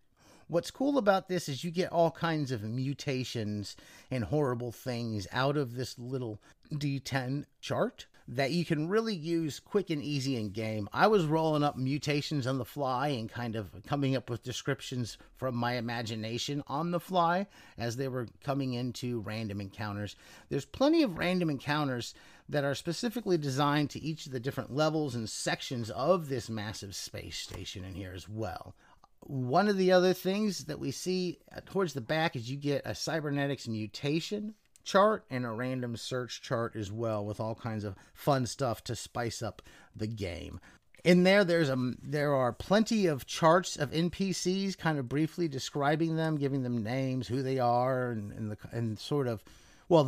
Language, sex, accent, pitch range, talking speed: English, male, American, 115-160 Hz, 180 wpm